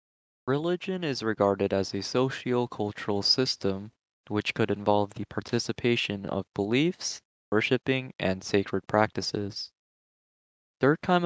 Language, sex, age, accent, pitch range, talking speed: English, male, 20-39, American, 100-120 Hz, 100 wpm